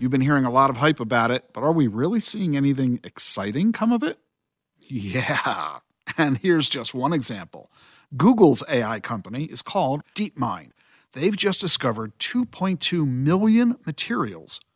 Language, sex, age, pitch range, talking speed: English, male, 50-69, 130-200 Hz, 150 wpm